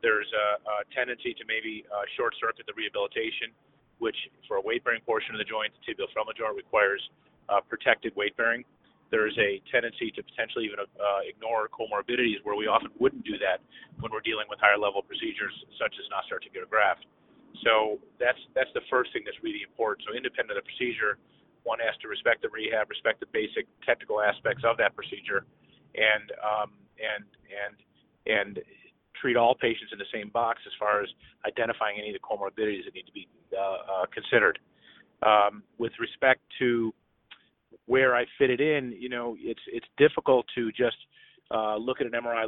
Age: 30-49